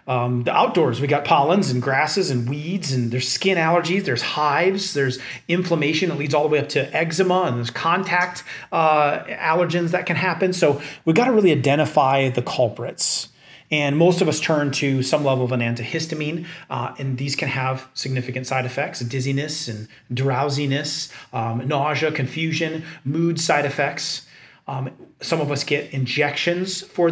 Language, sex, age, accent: English, male, 30-49, American